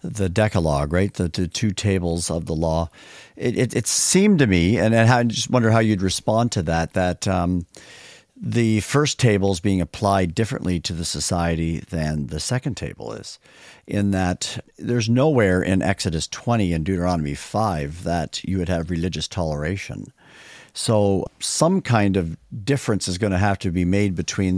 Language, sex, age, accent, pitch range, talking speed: English, male, 50-69, American, 90-110 Hz, 175 wpm